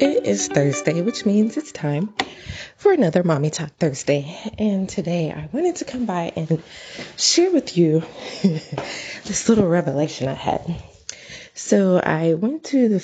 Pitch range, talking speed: 155-225 Hz, 150 wpm